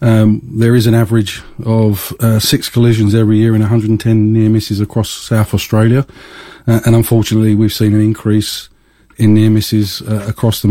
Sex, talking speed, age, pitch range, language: male, 175 wpm, 40-59, 105-110 Hz, English